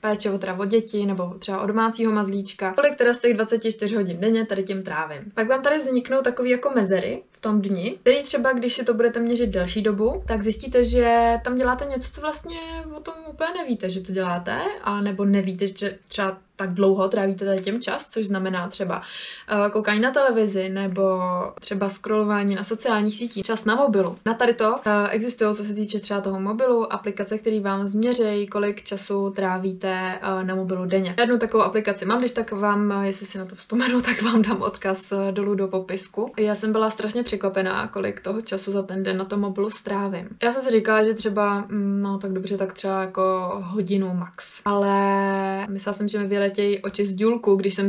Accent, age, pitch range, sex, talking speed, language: native, 20-39, 195-225 Hz, female, 205 wpm, Czech